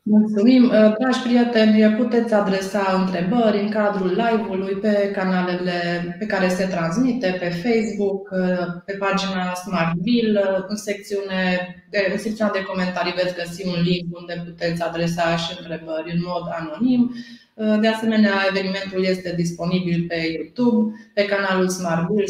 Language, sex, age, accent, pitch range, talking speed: Romanian, female, 20-39, native, 180-215 Hz, 130 wpm